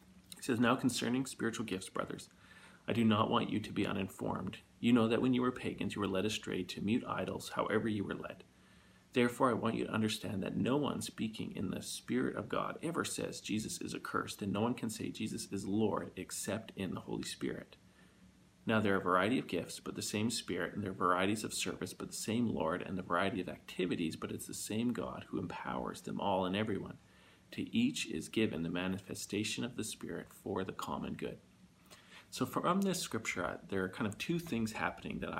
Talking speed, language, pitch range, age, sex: 215 wpm, English, 95-120 Hz, 40-59, male